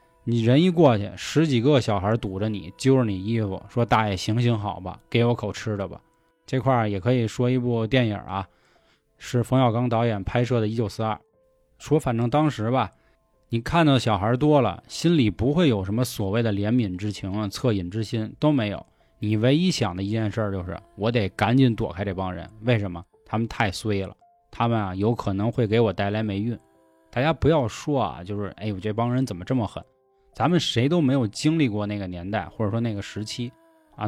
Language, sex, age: Chinese, male, 20-39